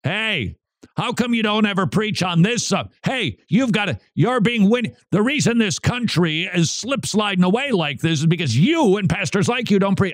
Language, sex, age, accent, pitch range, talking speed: English, male, 50-69, American, 115-175 Hz, 215 wpm